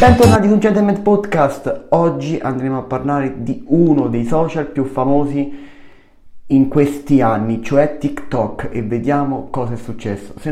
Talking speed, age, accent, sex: 145 wpm, 30-49, native, male